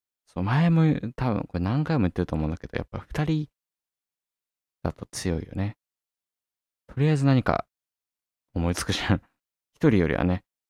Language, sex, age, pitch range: Japanese, male, 20-39, 85-110 Hz